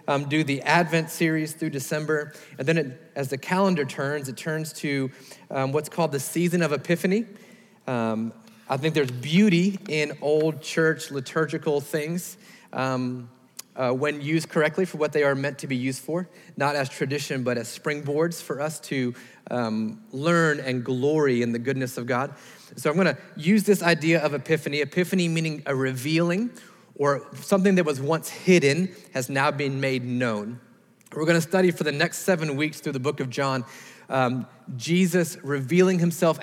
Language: English